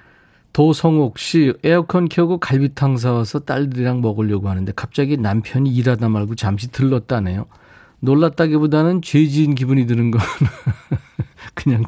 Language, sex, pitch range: Korean, male, 110-150 Hz